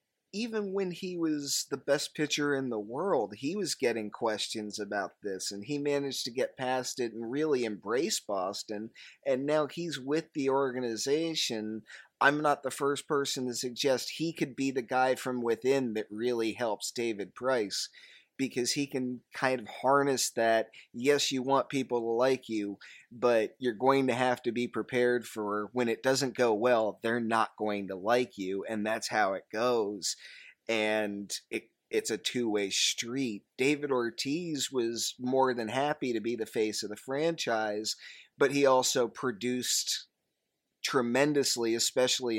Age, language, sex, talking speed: 30-49, English, male, 165 wpm